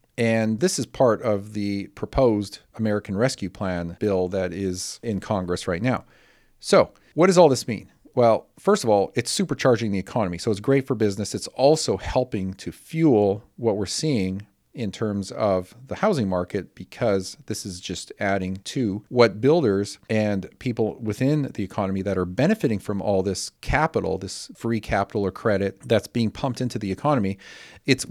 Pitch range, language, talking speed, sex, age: 95-120 Hz, English, 175 wpm, male, 40-59